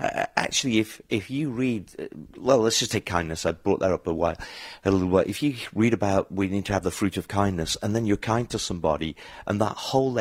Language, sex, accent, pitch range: English, male, British, 90-115 Hz